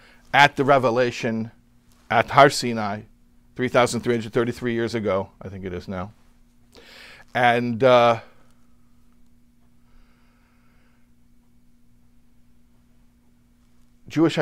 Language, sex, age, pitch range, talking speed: English, male, 50-69, 105-150 Hz, 70 wpm